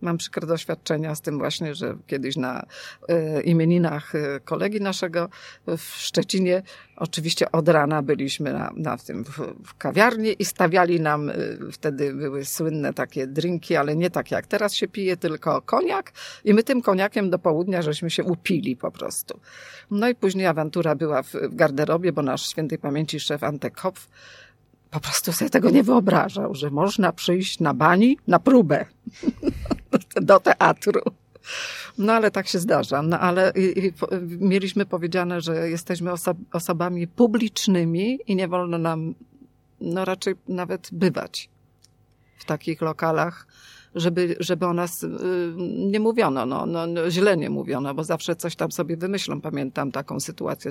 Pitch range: 155-190 Hz